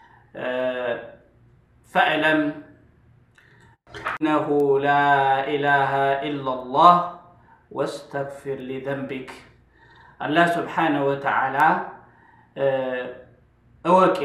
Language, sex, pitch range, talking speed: Amharic, male, 135-165 Hz, 50 wpm